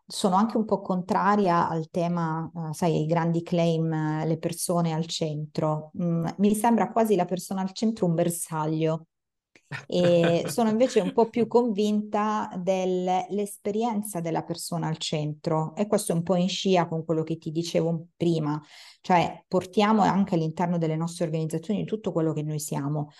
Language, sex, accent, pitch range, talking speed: Italian, female, native, 160-185 Hz, 155 wpm